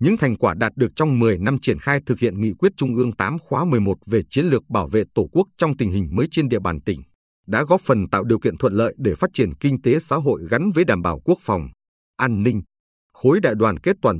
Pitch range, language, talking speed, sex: 95-140 Hz, Vietnamese, 260 wpm, male